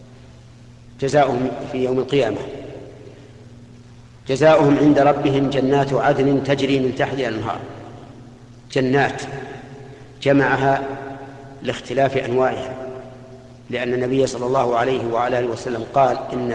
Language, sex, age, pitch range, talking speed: Arabic, male, 50-69, 125-135 Hz, 95 wpm